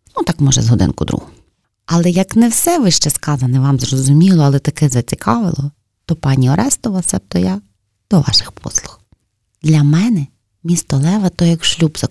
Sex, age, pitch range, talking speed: female, 30-49, 125-165 Hz, 165 wpm